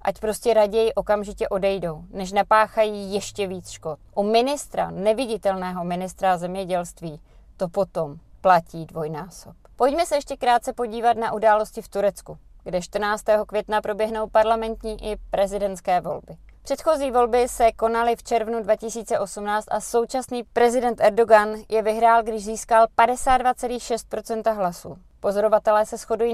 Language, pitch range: Czech, 200-235 Hz